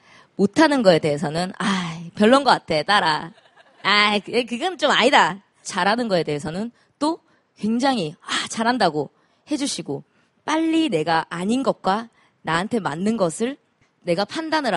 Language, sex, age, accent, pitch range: Korean, female, 20-39, native, 165-250 Hz